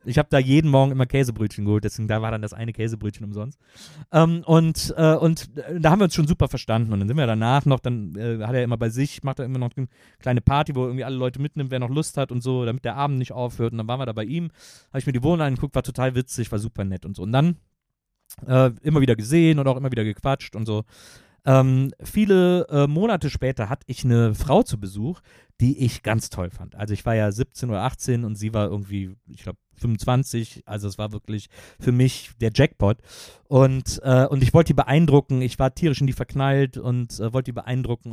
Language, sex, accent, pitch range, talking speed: German, male, German, 110-140 Hz, 240 wpm